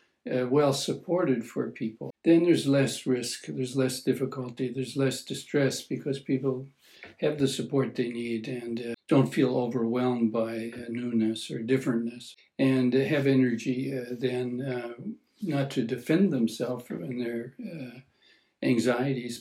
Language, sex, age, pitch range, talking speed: English, male, 60-79, 120-135 Hz, 140 wpm